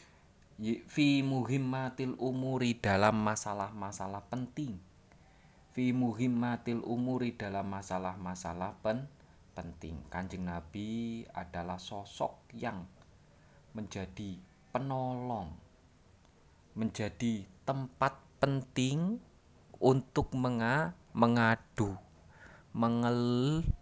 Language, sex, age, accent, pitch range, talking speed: Indonesian, male, 20-39, native, 95-125 Hz, 70 wpm